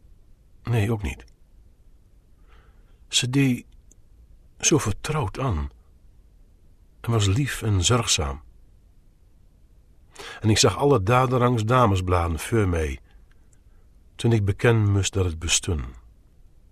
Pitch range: 80-110 Hz